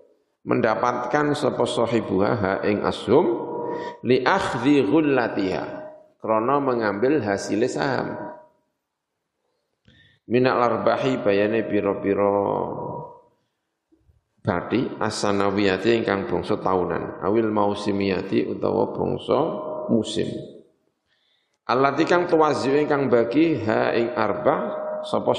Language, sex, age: Indonesian, male, 50-69